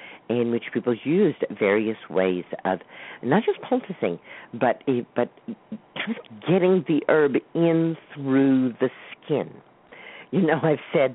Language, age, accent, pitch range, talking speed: English, 50-69, American, 105-135 Hz, 125 wpm